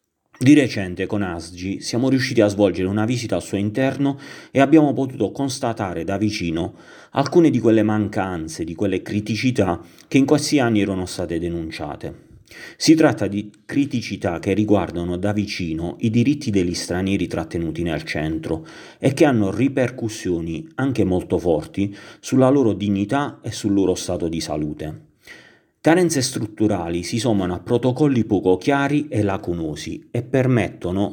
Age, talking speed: 40-59, 145 wpm